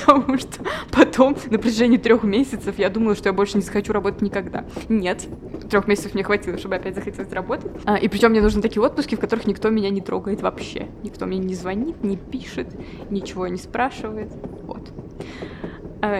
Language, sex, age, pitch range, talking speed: Russian, female, 20-39, 200-245 Hz, 185 wpm